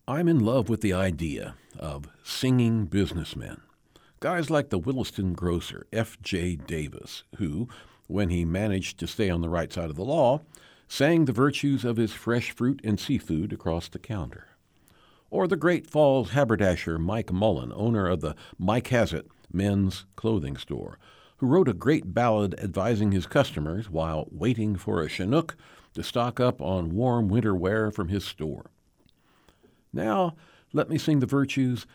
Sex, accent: male, American